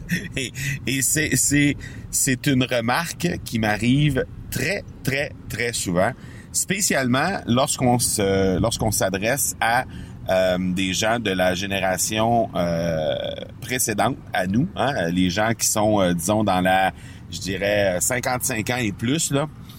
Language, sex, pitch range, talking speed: French, male, 95-125 Hz, 135 wpm